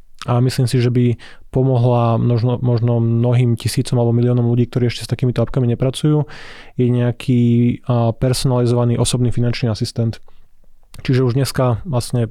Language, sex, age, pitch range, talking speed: Slovak, male, 20-39, 120-130 Hz, 145 wpm